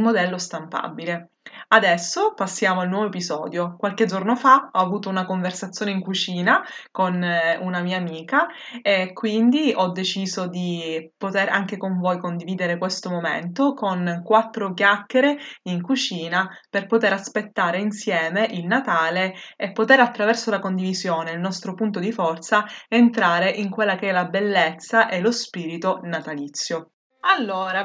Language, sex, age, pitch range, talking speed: Italian, female, 20-39, 175-215 Hz, 140 wpm